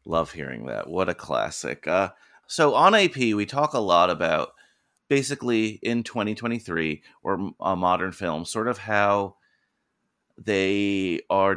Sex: male